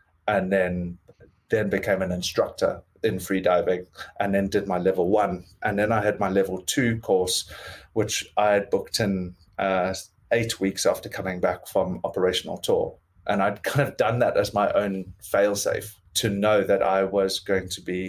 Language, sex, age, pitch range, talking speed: English, male, 30-49, 90-100 Hz, 180 wpm